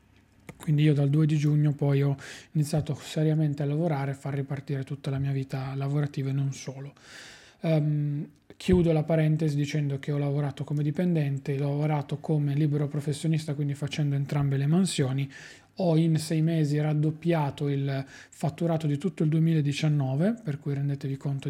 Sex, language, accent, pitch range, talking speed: male, Italian, native, 140-160 Hz, 160 wpm